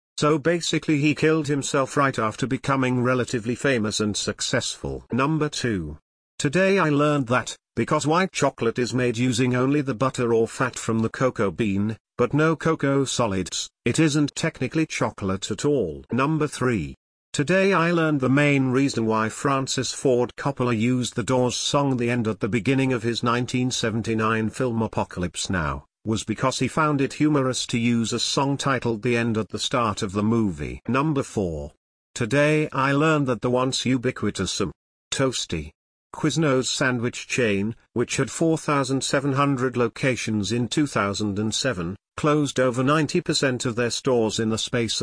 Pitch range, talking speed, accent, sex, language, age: 110-145 Hz, 155 wpm, British, male, English, 50-69